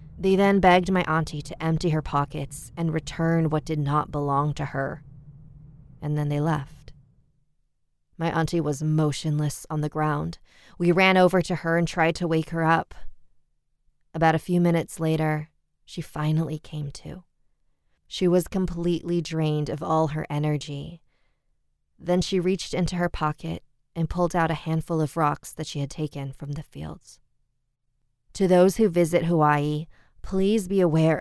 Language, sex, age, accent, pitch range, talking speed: English, female, 20-39, American, 145-165 Hz, 160 wpm